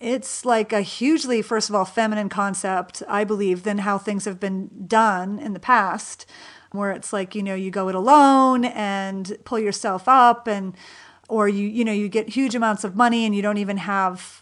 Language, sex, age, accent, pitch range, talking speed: English, female, 40-59, American, 200-230 Hz, 205 wpm